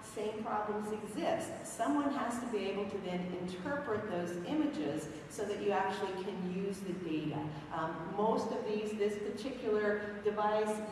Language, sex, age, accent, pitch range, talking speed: English, female, 40-59, American, 185-225 Hz, 155 wpm